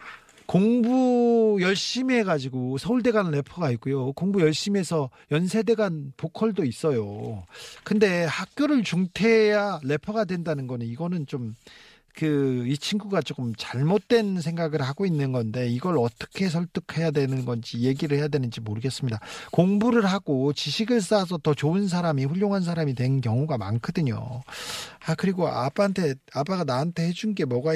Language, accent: Korean, native